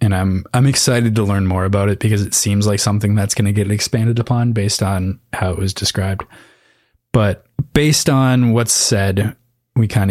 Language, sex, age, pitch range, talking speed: English, male, 20-39, 95-115 Hz, 195 wpm